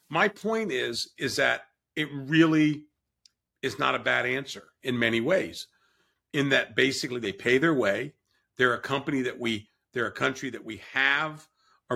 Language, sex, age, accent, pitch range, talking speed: English, male, 50-69, American, 120-140 Hz, 170 wpm